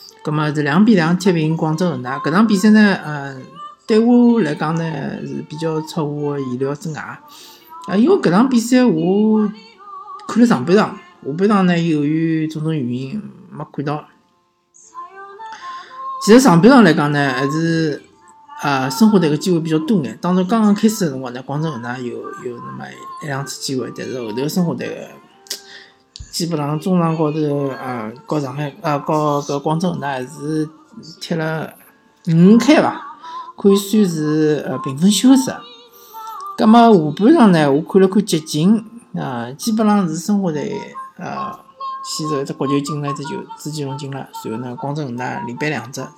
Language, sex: Chinese, male